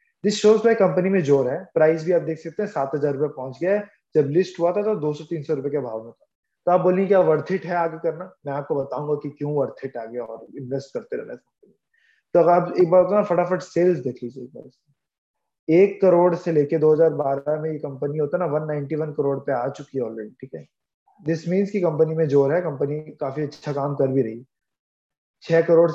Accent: native